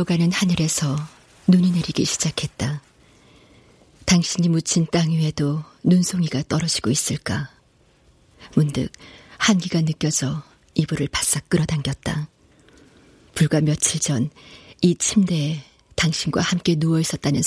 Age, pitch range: 40-59, 145-175 Hz